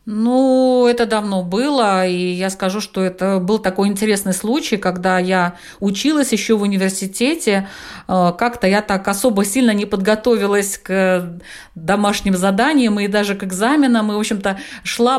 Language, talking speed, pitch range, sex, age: Russian, 145 wpm, 195-255 Hz, female, 50-69